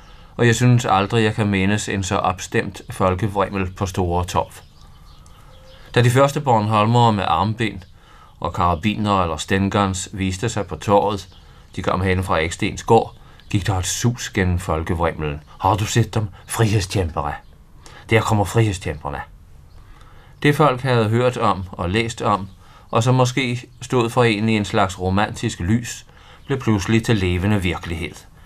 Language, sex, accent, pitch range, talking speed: Danish, male, native, 85-110 Hz, 150 wpm